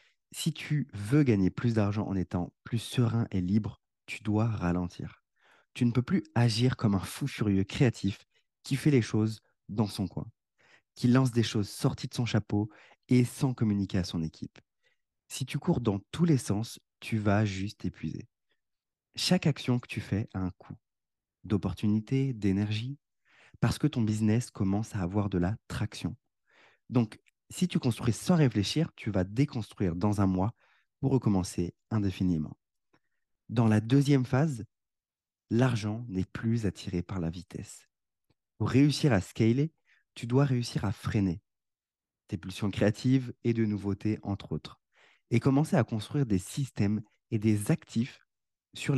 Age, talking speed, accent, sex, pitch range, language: 30-49, 160 wpm, French, male, 95-125 Hz, French